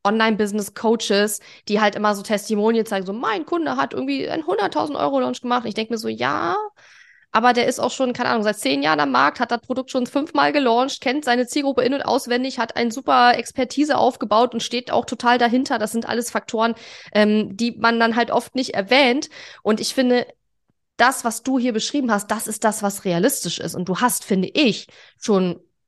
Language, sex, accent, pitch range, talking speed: German, female, German, 205-245 Hz, 200 wpm